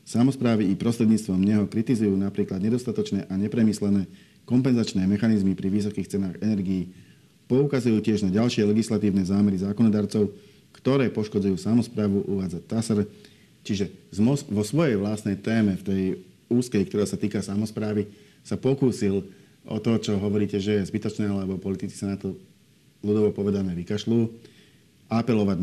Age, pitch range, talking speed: 50-69, 100-110 Hz, 135 wpm